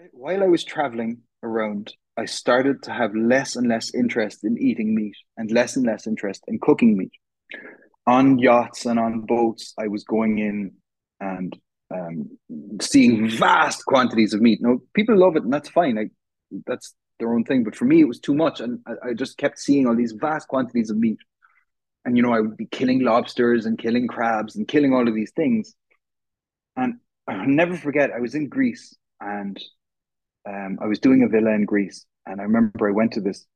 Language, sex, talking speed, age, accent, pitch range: English, male, 200 wpm, 30-49, Irish, 110-170 Hz